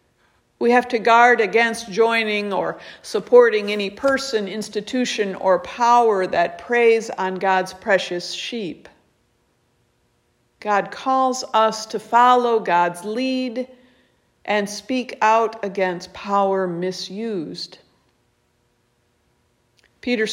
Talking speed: 95 wpm